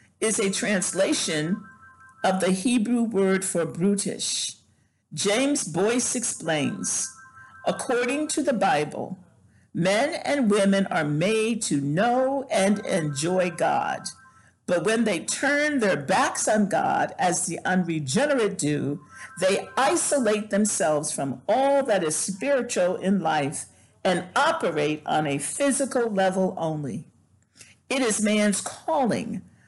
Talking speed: 120 wpm